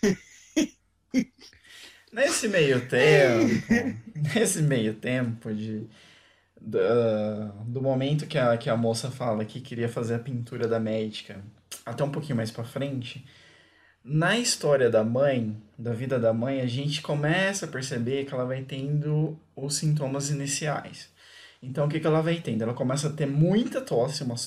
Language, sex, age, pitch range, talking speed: Portuguese, male, 20-39, 120-160 Hz, 155 wpm